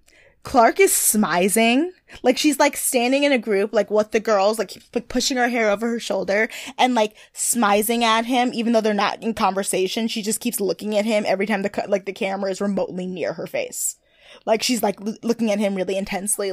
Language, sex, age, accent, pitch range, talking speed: English, female, 10-29, American, 200-260 Hz, 220 wpm